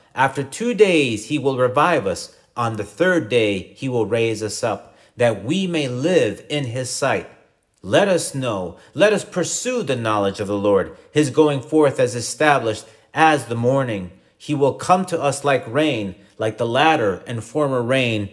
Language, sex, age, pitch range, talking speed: English, male, 40-59, 115-160 Hz, 180 wpm